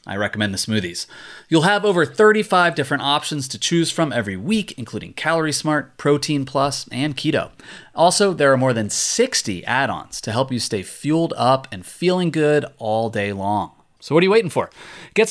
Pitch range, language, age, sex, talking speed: 115-160 Hz, English, 30-49, male, 190 wpm